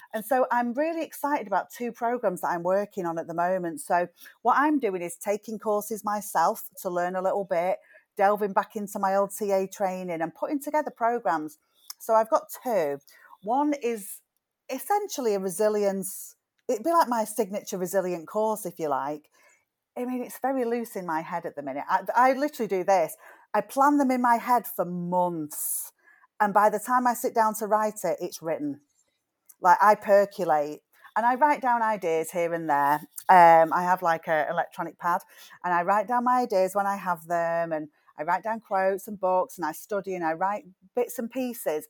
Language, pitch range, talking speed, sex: English, 175-240 Hz, 200 wpm, female